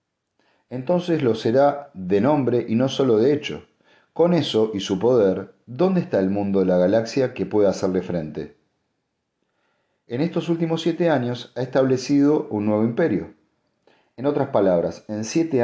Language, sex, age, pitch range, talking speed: Spanish, male, 40-59, 100-140 Hz, 155 wpm